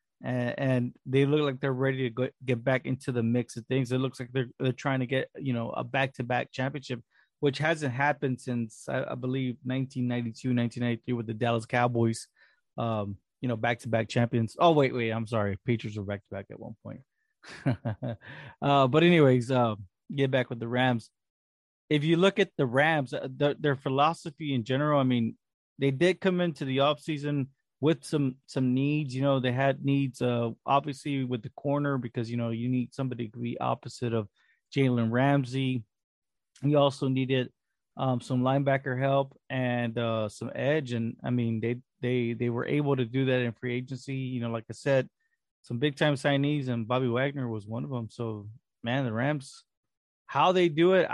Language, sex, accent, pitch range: English, male, American, 120-140 Hz